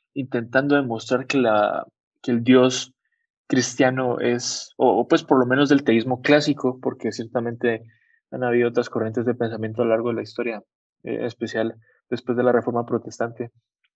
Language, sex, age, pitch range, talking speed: Spanish, male, 20-39, 120-145 Hz, 160 wpm